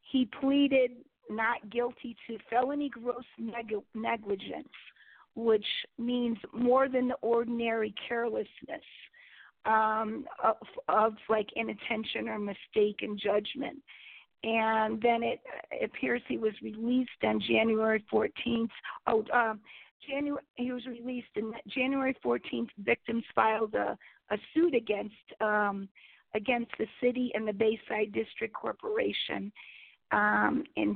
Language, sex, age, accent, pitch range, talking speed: English, female, 50-69, American, 215-245 Hz, 120 wpm